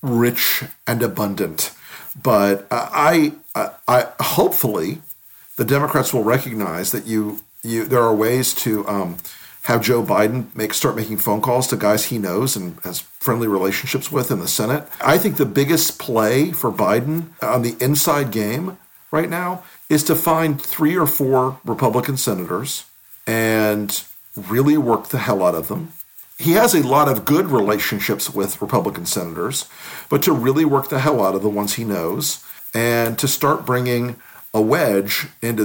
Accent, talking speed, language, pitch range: American, 165 wpm, English, 110-145 Hz